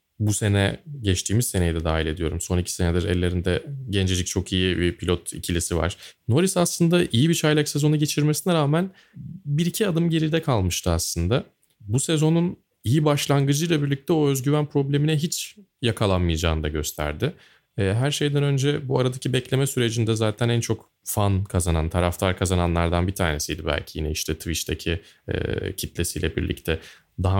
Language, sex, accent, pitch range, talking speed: Turkish, male, native, 85-145 Hz, 145 wpm